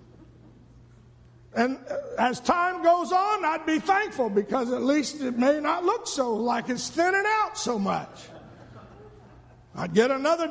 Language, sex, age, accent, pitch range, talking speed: English, male, 50-69, American, 185-260 Hz, 145 wpm